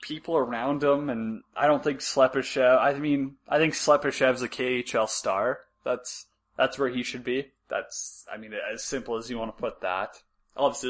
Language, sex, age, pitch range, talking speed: English, male, 20-39, 110-145 Hz, 185 wpm